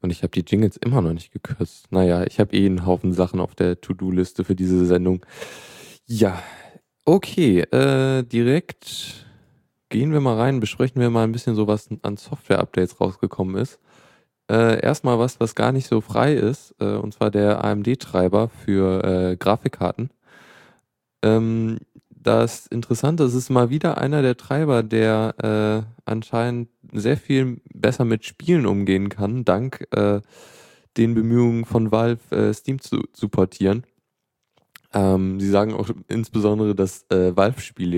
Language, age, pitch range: German, 20-39, 95-120 Hz